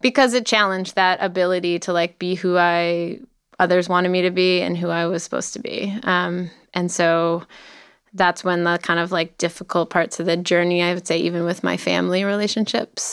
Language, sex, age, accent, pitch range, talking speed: English, female, 20-39, American, 175-210 Hz, 200 wpm